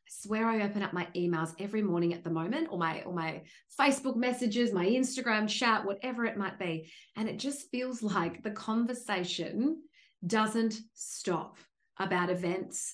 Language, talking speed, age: English, 160 wpm, 30-49